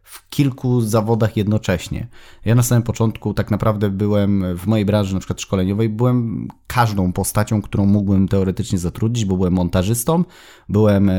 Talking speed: 150 wpm